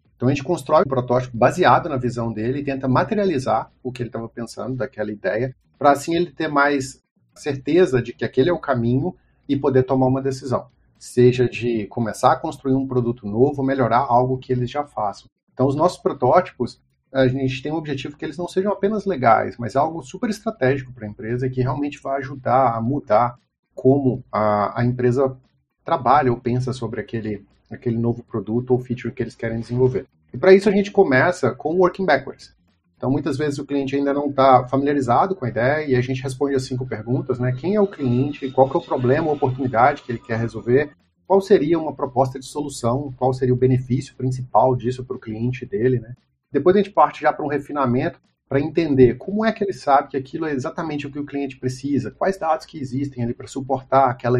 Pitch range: 120-145 Hz